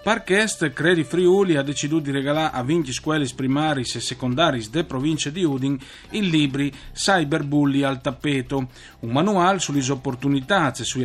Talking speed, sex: 145 wpm, male